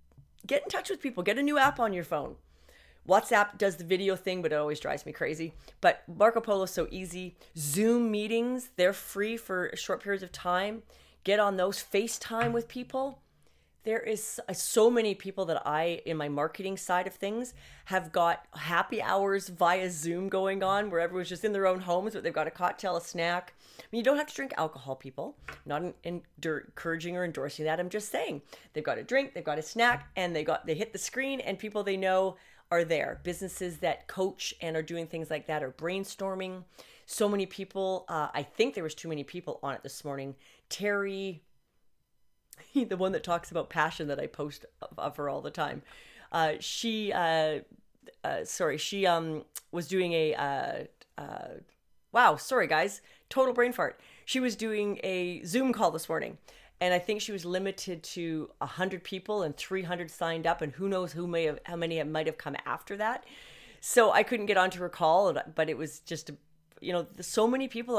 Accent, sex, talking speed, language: American, female, 200 wpm, English